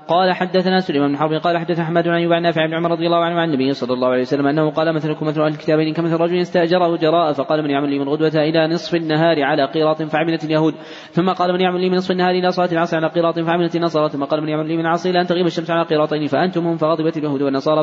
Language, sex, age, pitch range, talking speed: Arabic, male, 20-39, 155-170 Hz, 260 wpm